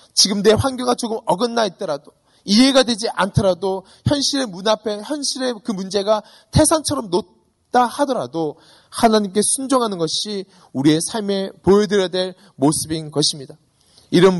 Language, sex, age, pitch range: Korean, male, 20-39, 130-185 Hz